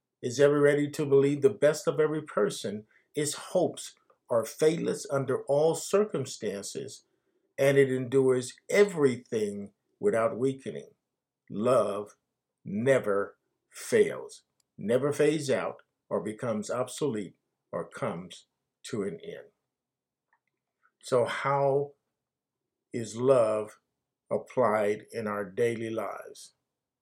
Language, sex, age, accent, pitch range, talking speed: English, male, 50-69, American, 120-155 Hz, 100 wpm